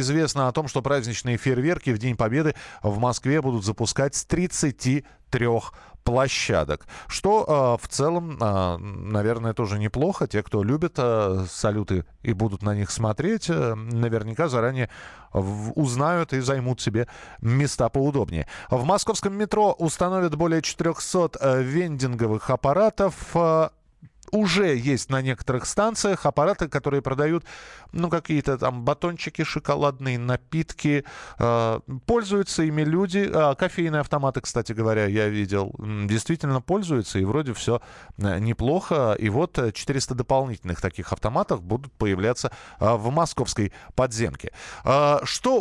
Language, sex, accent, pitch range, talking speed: Russian, male, native, 115-165 Hz, 115 wpm